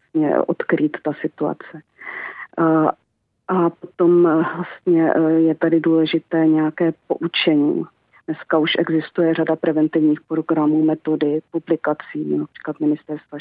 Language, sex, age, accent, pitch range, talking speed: Czech, female, 40-59, native, 155-165 Hz, 95 wpm